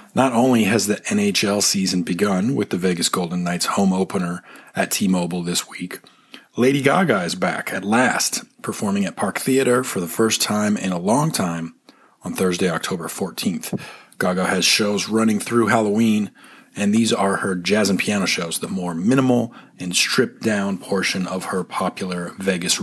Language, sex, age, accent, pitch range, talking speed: English, male, 40-59, American, 95-120 Hz, 170 wpm